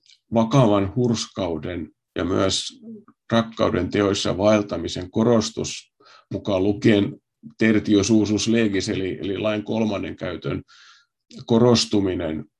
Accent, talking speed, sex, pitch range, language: native, 75 wpm, male, 95-110 Hz, Finnish